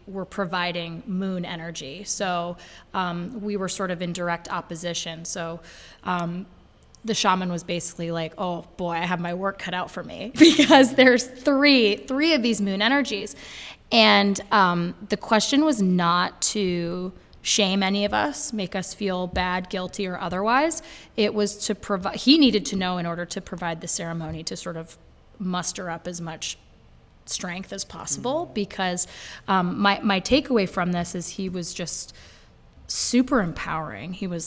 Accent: American